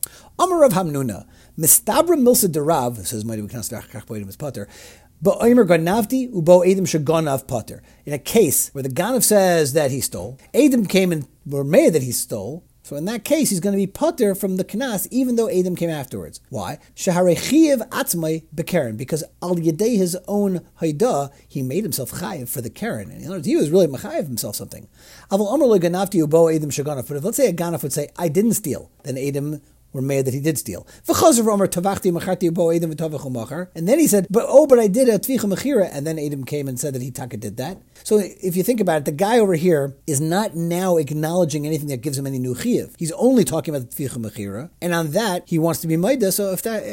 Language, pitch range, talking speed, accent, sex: English, 140-195 Hz, 190 wpm, American, male